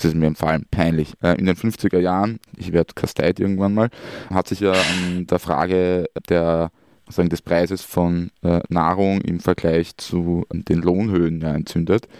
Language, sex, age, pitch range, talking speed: German, male, 20-39, 85-100 Hz, 155 wpm